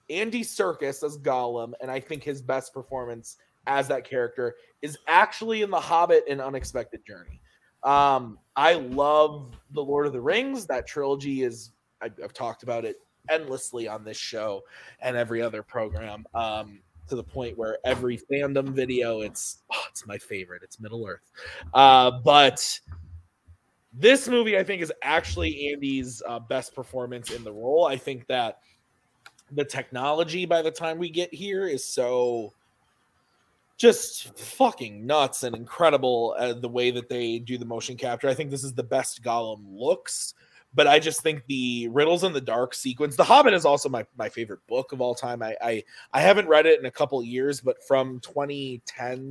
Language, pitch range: English, 115-150 Hz